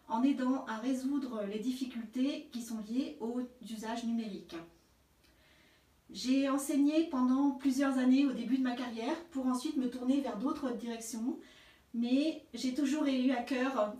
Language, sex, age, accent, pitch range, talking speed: French, female, 40-59, French, 220-265 Hz, 150 wpm